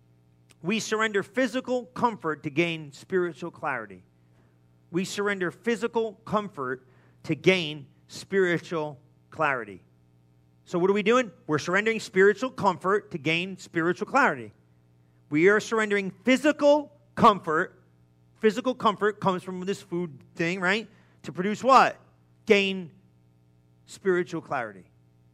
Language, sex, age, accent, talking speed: English, male, 50-69, American, 115 wpm